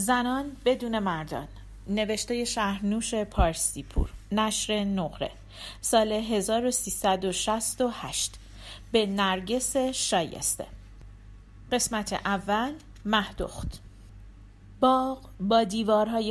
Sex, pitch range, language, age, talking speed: female, 190-255 Hz, Persian, 40-59, 70 wpm